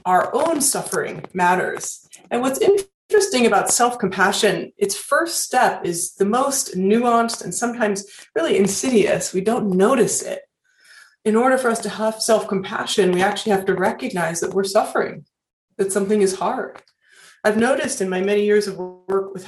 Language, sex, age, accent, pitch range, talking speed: English, female, 30-49, American, 190-235 Hz, 160 wpm